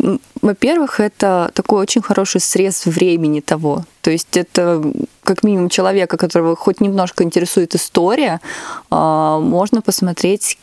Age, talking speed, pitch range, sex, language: 20-39, 120 wpm, 170-200 Hz, female, Russian